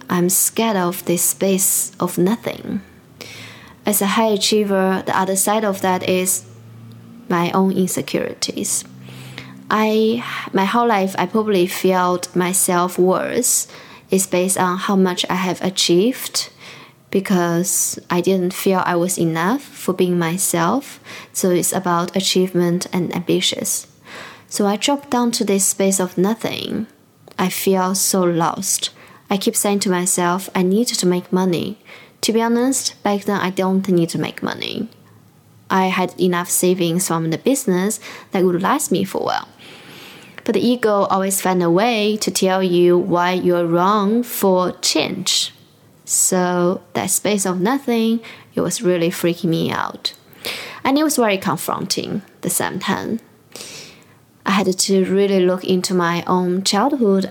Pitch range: 175-205 Hz